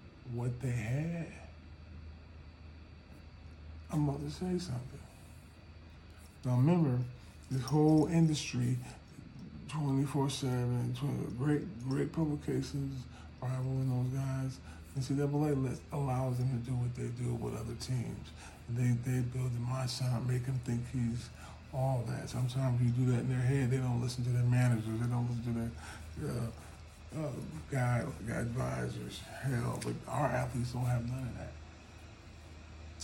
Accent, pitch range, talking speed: American, 80-130 Hz, 125 wpm